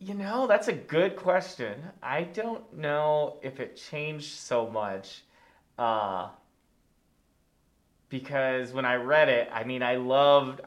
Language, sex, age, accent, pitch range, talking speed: English, male, 30-49, American, 115-135 Hz, 135 wpm